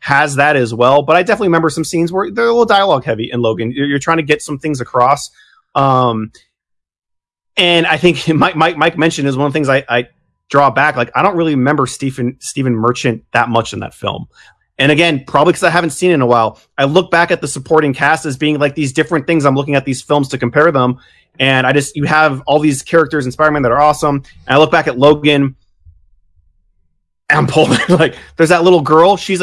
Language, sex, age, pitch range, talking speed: English, male, 30-49, 125-155 Hz, 230 wpm